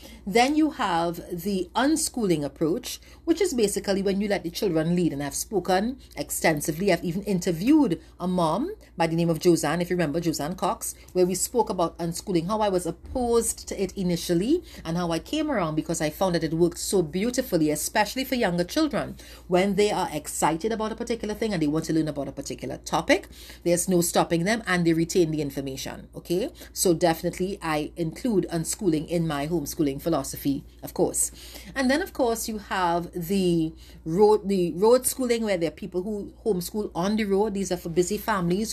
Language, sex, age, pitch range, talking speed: English, female, 40-59, 170-225 Hz, 195 wpm